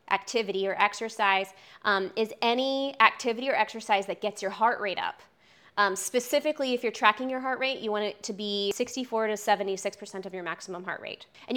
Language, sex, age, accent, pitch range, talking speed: English, female, 20-39, American, 200-240 Hz, 190 wpm